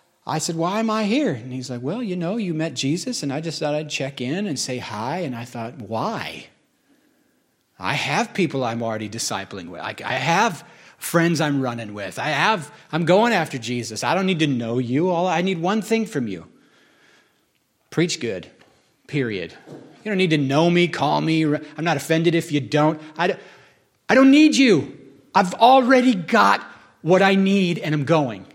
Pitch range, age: 140-195 Hz, 40-59